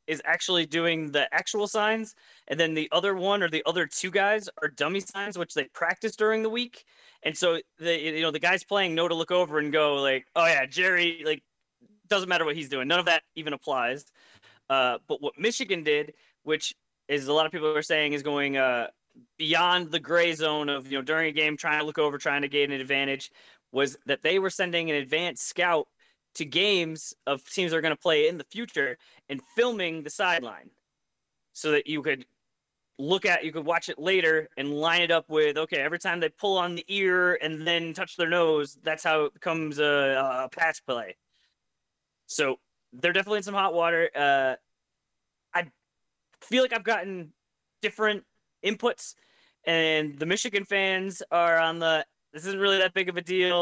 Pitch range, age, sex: 155-190 Hz, 20-39, male